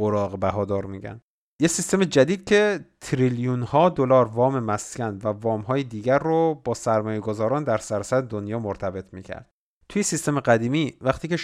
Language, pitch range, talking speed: Persian, 110-140 Hz, 145 wpm